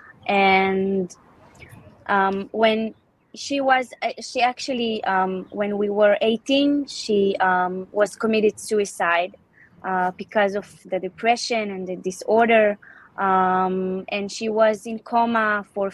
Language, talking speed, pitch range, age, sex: English, 120 wpm, 190-225 Hz, 20-39, female